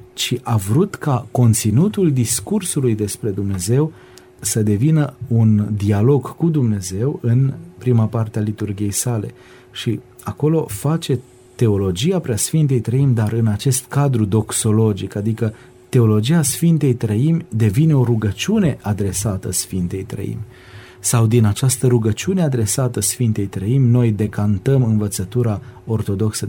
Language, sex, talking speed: Romanian, male, 120 wpm